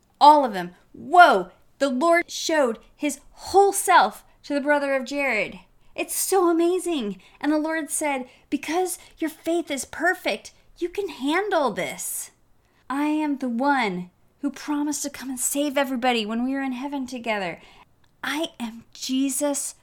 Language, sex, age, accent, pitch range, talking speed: English, female, 30-49, American, 250-330 Hz, 155 wpm